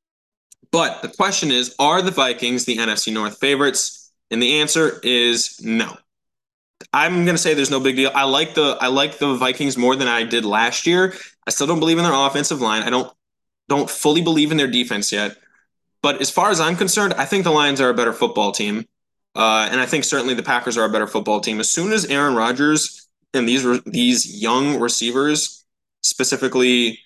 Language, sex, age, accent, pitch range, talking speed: English, male, 20-39, American, 115-150 Hz, 205 wpm